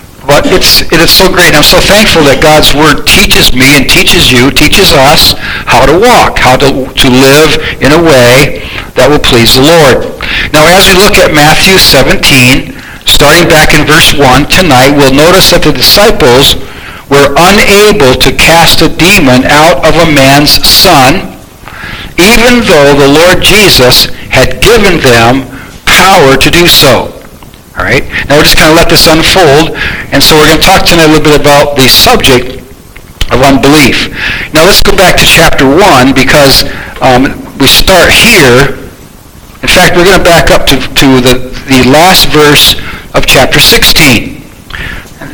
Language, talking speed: English, 170 wpm